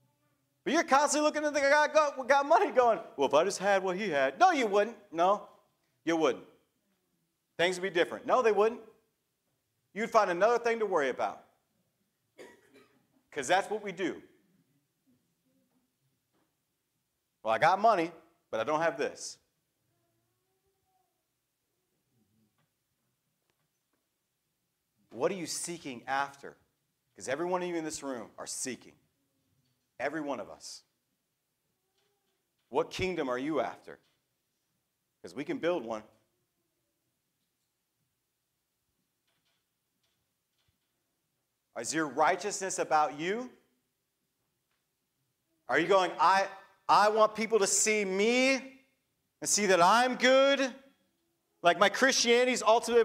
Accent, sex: American, male